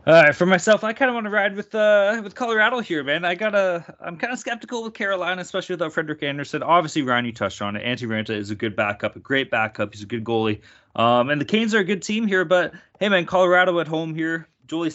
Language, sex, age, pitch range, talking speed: English, male, 30-49, 130-195 Hz, 255 wpm